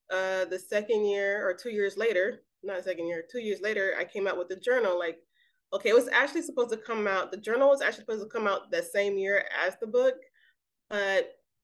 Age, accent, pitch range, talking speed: 20-39, American, 185-225 Hz, 225 wpm